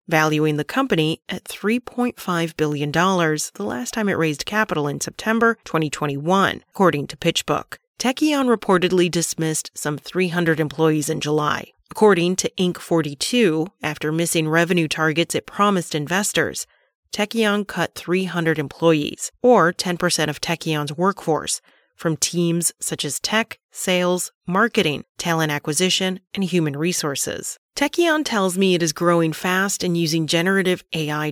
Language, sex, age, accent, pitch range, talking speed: English, female, 30-49, American, 160-200 Hz, 130 wpm